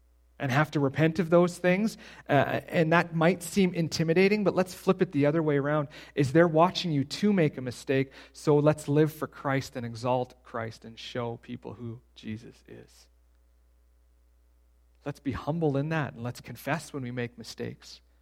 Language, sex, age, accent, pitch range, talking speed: English, male, 40-59, American, 115-160 Hz, 180 wpm